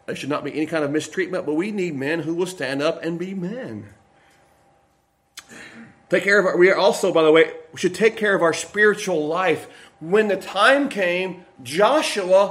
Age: 40-59